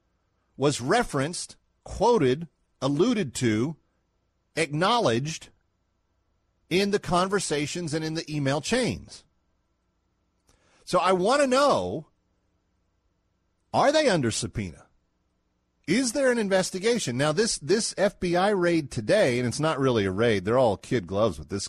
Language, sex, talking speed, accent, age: English, male, 125 wpm, American, 40-59